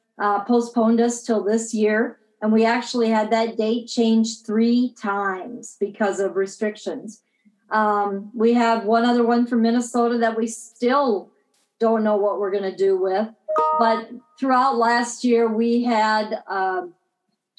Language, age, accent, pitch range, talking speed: English, 50-69, American, 210-245 Hz, 145 wpm